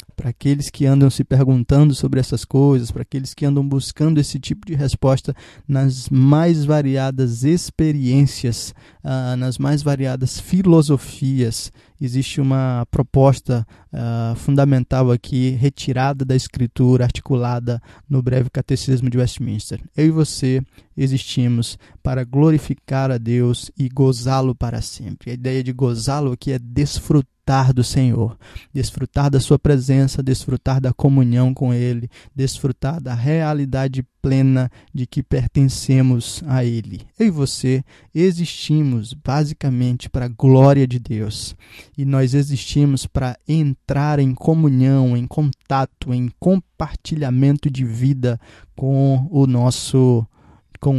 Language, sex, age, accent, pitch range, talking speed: Portuguese, male, 20-39, Brazilian, 125-140 Hz, 125 wpm